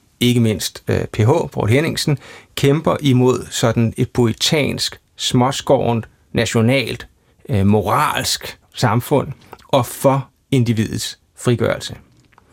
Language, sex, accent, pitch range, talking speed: Danish, male, native, 115-135 Hz, 95 wpm